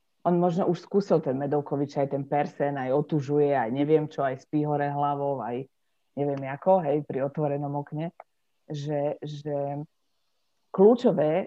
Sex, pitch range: female, 145-180 Hz